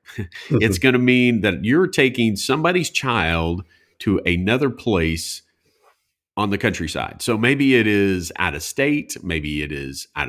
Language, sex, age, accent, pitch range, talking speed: English, male, 50-69, American, 80-115 Hz, 150 wpm